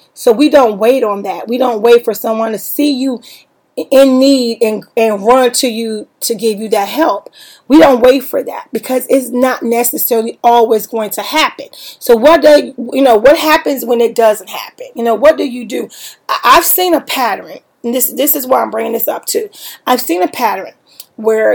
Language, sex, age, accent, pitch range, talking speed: English, female, 30-49, American, 215-260 Hz, 210 wpm